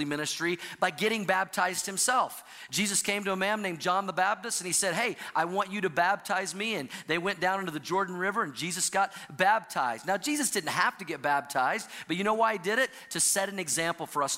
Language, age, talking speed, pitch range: English, 40-59, 235 wpm, 165-215 Hz